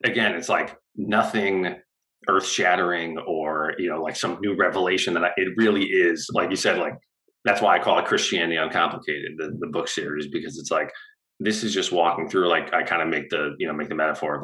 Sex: male